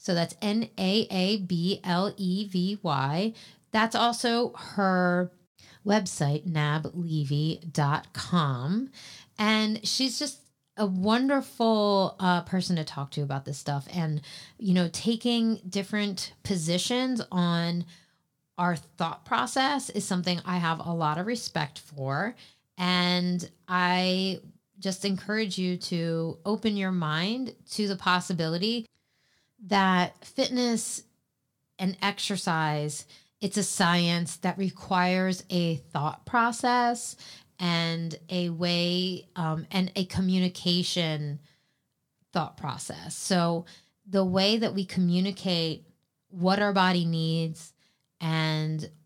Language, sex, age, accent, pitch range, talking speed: English, female, 30-49, American, 160-200 Hz, 105 wpm